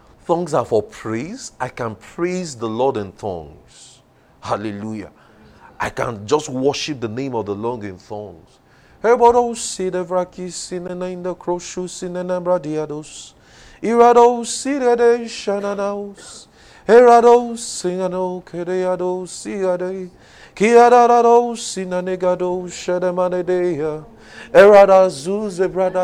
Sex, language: male, English